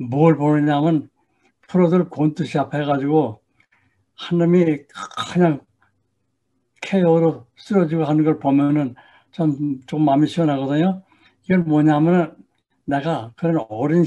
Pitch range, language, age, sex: 125-160 Hz, Korean, 60-79, male